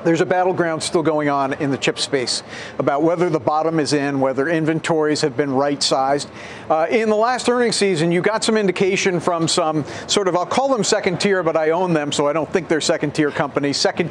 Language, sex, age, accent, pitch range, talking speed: English, male, 50-69, American, 160-210 Hz, 220 wpm